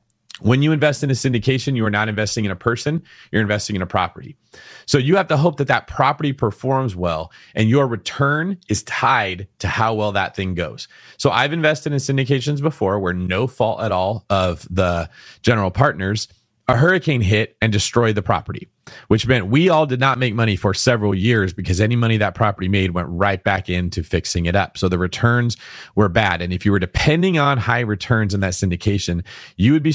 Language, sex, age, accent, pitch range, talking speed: English, male, 30-49, American, 95-135 Hz, 210 wpm